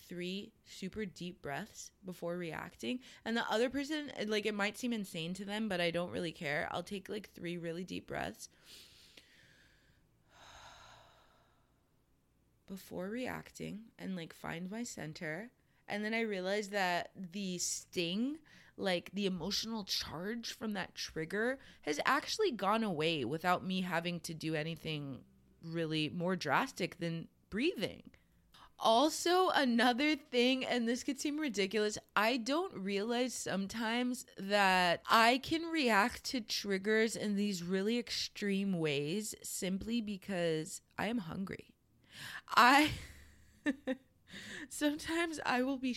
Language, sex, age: English, female, 20-39